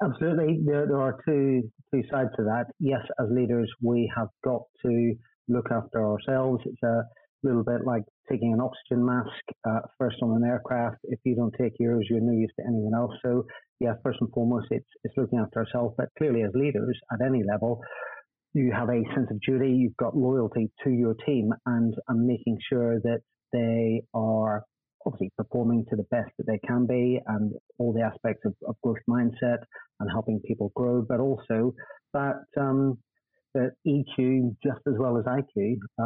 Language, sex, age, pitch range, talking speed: English, male, 30-49, 115-130 Hz, 190 wpm